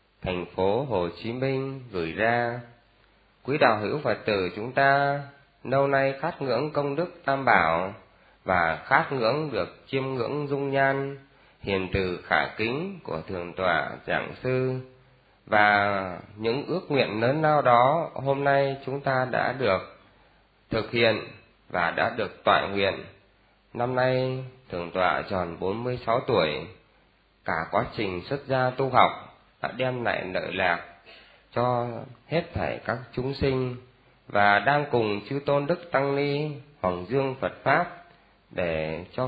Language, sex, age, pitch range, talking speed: Vietnamese, male, 20-39, 105-140 Hz, 150 wpm